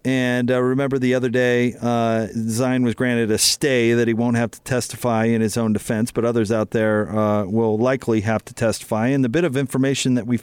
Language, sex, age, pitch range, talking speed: English, male, 40-59, 115-140 Hz, 225 wpm